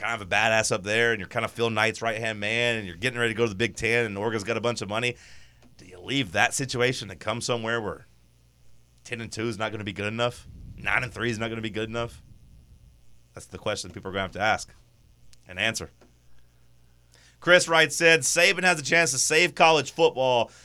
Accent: American